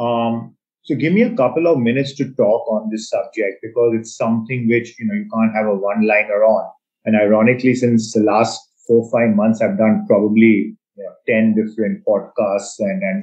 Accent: native